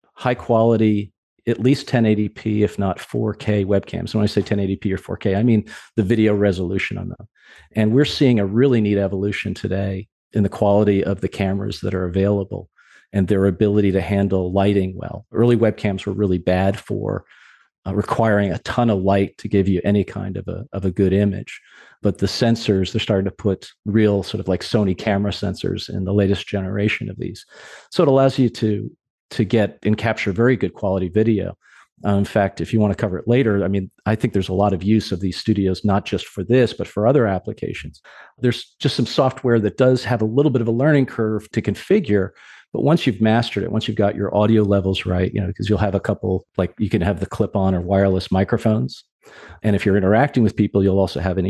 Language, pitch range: English, 100-110 Hz